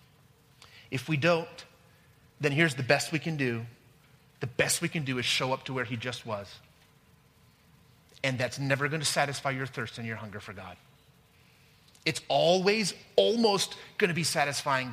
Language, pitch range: English, 120-160 Hz